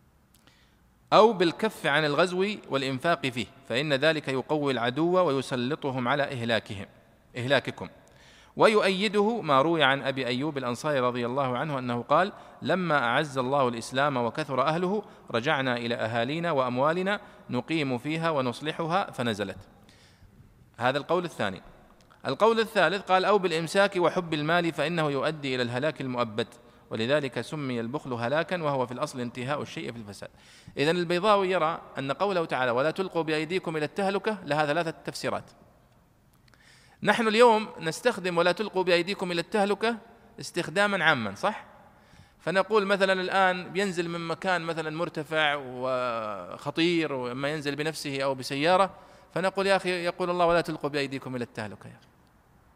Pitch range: 125-180 Hz